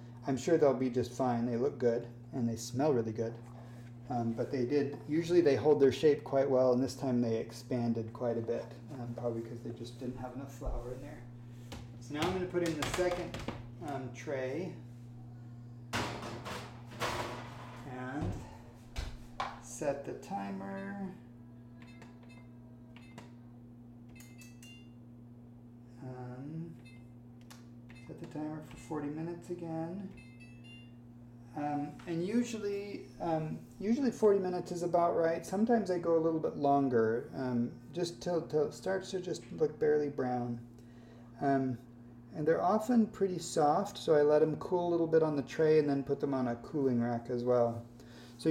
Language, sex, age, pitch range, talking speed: English, male, 30-49, 120-155 Hz, 150 wpm